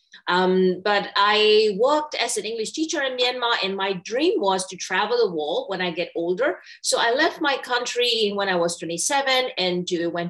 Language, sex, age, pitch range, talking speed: English, female, 30-49, 190-250 Hz, 200 wpm